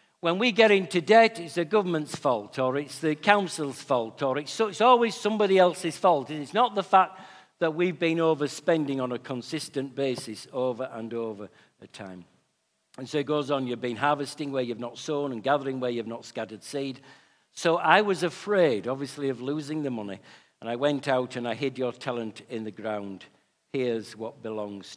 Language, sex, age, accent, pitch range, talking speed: English, male, 60-79, British, 120-165 Hz, 200 wpm